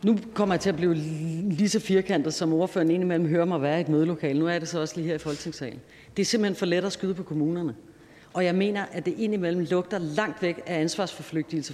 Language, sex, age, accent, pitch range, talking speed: Danish, female, 40-59, native, 160-200 Hz, 240 wpm